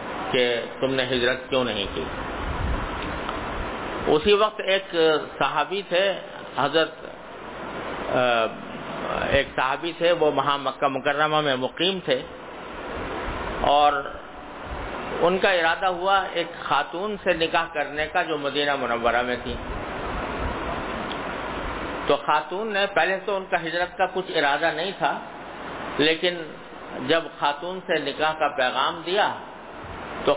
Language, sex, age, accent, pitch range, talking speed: English, male, 50-69, Indian, 130-165 Hz, 120 wpm